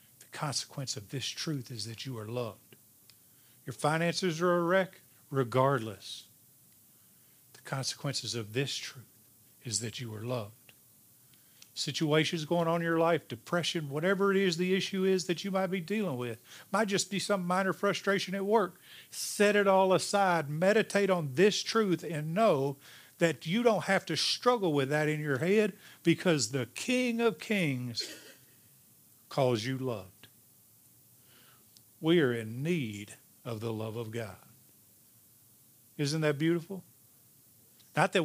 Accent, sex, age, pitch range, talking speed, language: American, male, 50-69, 120-170 Hz, 150 wpm, English